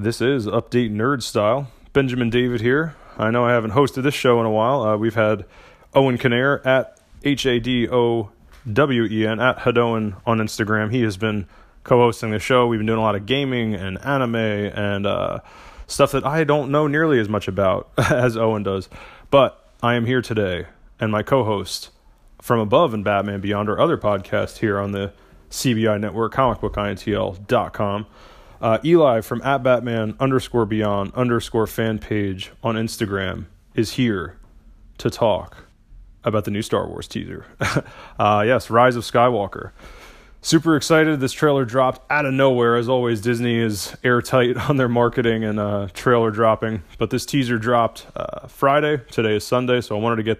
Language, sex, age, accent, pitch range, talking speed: English, male, 30-49, American, 105-130 Hz, 170 wpm